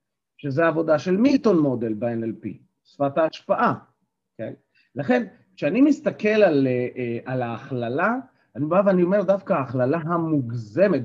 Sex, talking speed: male, 120 wpm